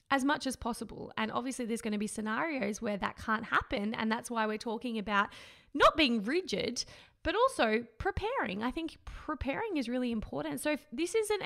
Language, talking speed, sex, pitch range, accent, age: English, 195 wpm, female, 220-290 Hz, Australian, 20-39